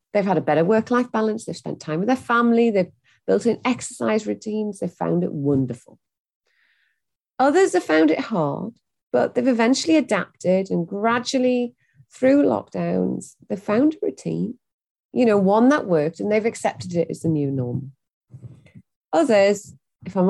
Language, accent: English, British